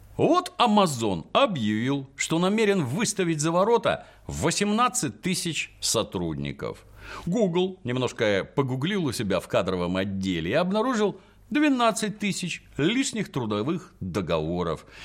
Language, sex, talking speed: Russian, male, 105 wpm